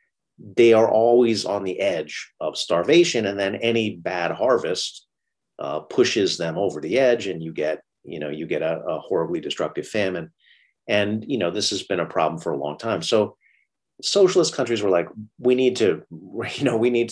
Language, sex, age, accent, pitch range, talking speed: English, male, 40-59, American, 95-125 Hz, 195 wpm